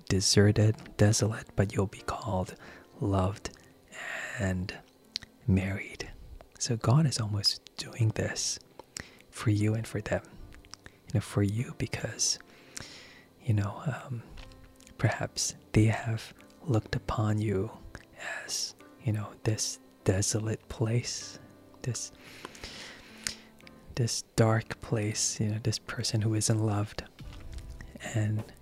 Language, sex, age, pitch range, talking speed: English, male, 20-39, 100-115 Hz, 110 wpm